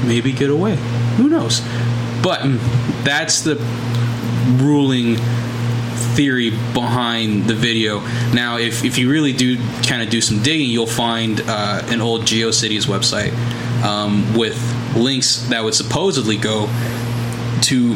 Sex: male